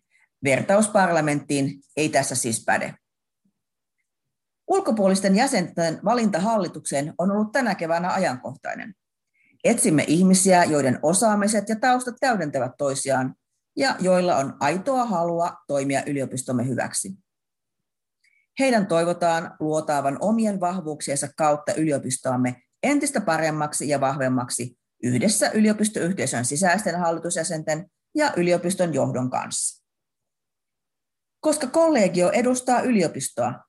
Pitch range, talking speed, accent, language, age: 145-210 Hz, 95 wpm, native, Finnish, 40-59